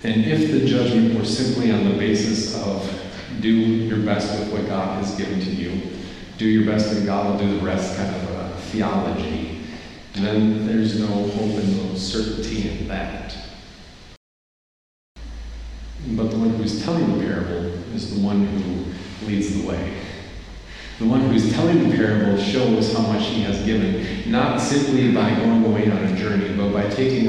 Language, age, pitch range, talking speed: English, 30-49, 100-110 Hz, 175 wpm